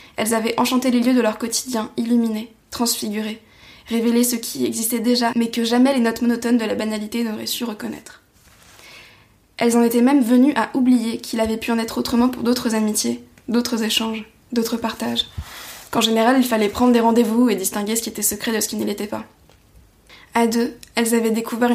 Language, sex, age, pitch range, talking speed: French, female, 20-39, 215-235 Hz, 195 wpm